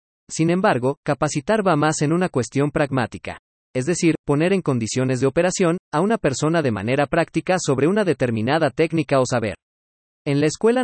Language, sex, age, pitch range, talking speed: Spanish, male, 40-59, 120-165 Hz, 170 wpm